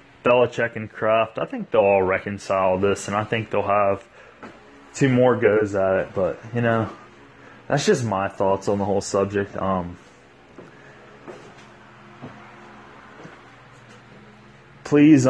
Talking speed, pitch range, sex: 125 wpm, 90-110 Hz, male